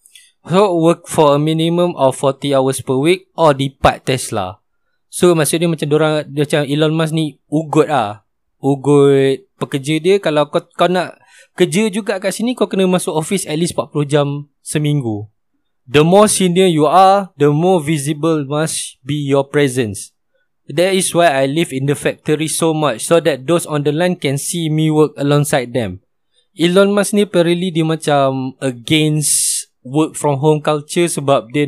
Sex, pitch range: male, 135-170 Hz